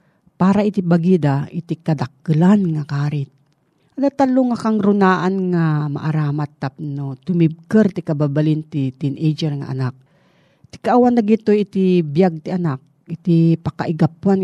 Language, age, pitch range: Filipino, 40-59, 150-190 Hz